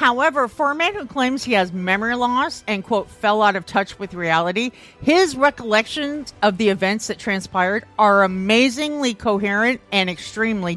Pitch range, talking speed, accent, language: 190-255 Hz, 165 wpm, American, English